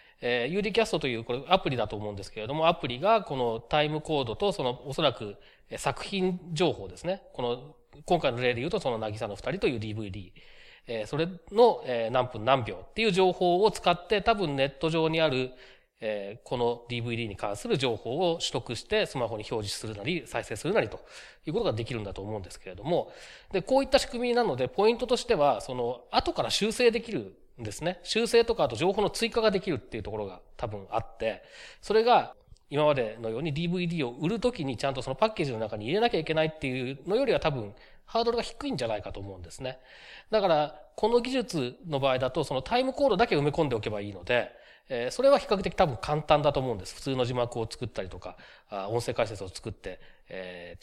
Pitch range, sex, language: 115-190 Hz, male, Japanese